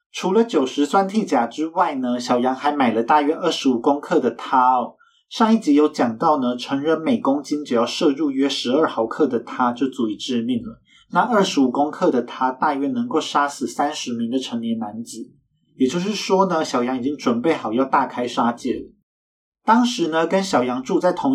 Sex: male